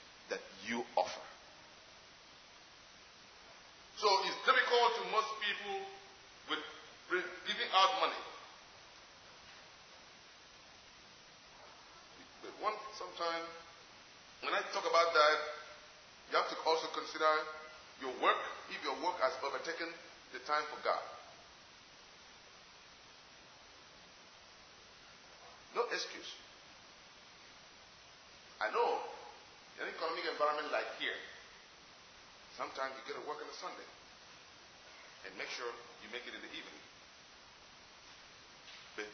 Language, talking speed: English, 100 wpm